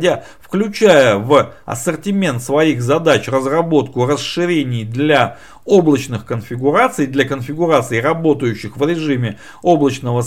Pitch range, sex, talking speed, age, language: 115-160 Hz, male, 95 wpm, 50-69, Russian